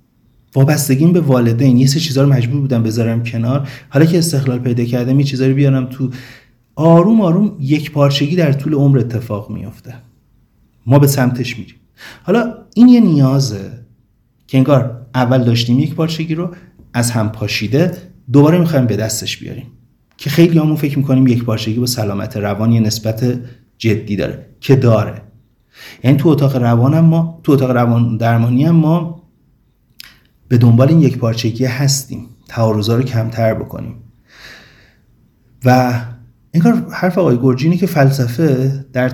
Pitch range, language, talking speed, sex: 115-140 Hz, Persian, 145 wpm, male